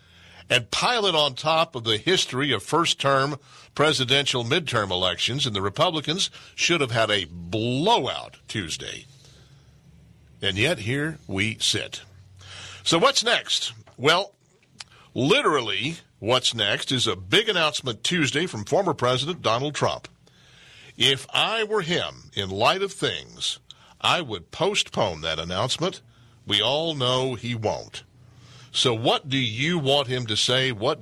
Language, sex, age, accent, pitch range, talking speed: English, male, 60-79, American, 105-140 Hz, 135 wpm